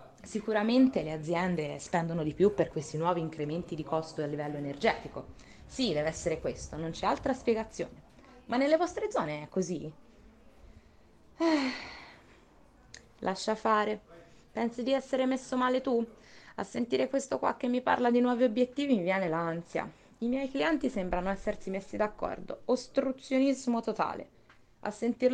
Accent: native